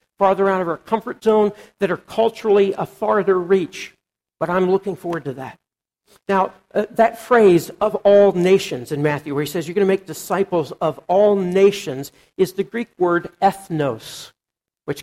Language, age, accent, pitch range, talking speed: English, 60-79, American, 170-205 Hz, 175 wpm